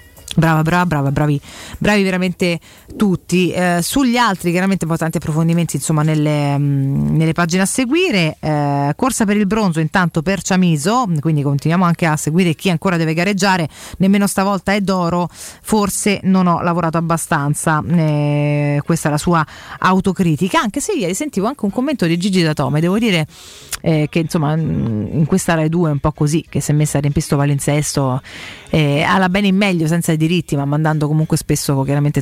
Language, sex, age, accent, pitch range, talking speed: Italian, female, 30-49, native, 150-185 Hz, 175 wpm